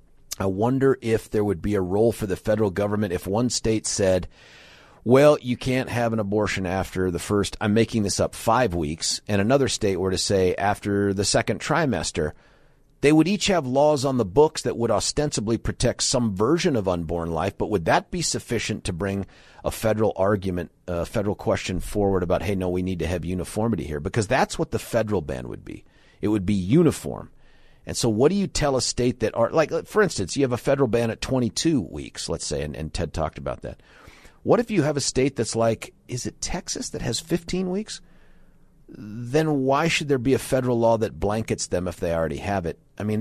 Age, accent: 40-59, American